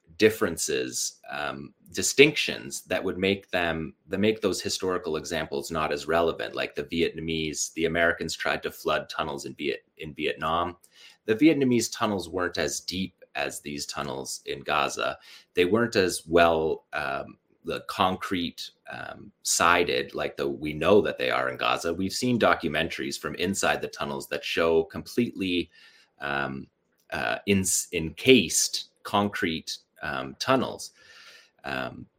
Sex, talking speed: male, 140 wpm